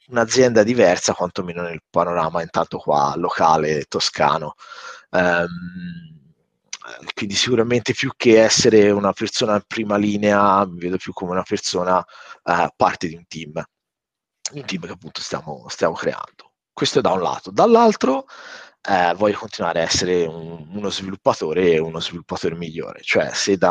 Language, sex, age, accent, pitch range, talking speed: Italian, male, 30-49, native, 90-110 Hz, 150 wpm